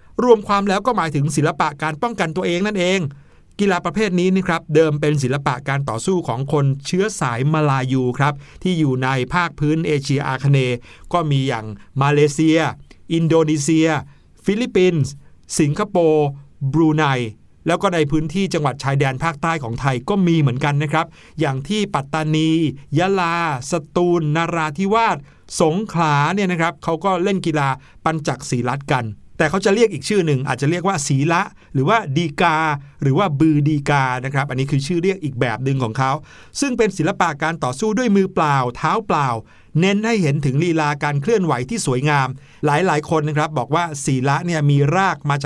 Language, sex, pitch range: Thai, male, 140-175 Hz